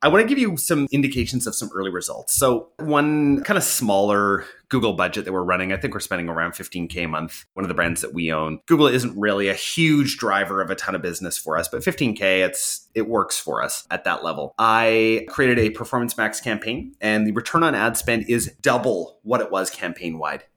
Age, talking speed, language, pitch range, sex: 30-49, 225 wpm, English, 95-145 Hz, male